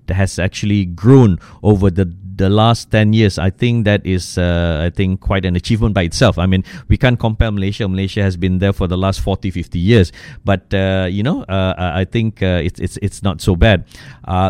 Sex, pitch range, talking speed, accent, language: male, 100-130 Hz, 215 wpm, Malaysian, English